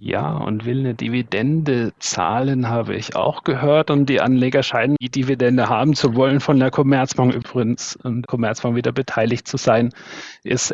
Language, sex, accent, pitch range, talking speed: German, male, German, 120-135 Hz, 170 wpm